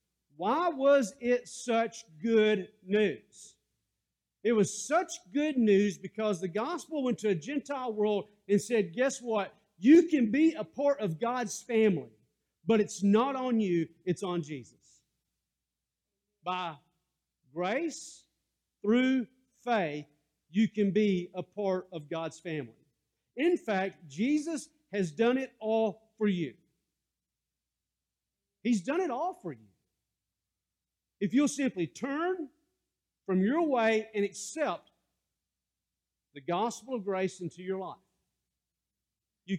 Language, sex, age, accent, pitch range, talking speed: English, male, 50-69, American, 185-255 Hz, 125 wpm